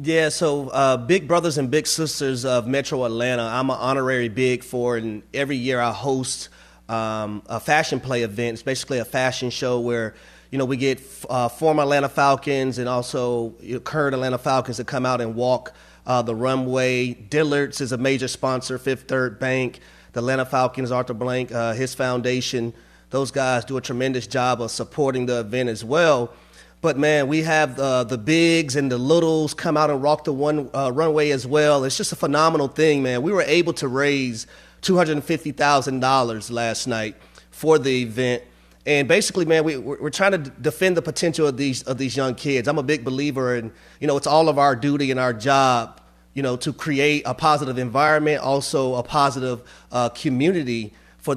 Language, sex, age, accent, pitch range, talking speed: English, male, 30-49, American, 125-145 Hz, 190 wpm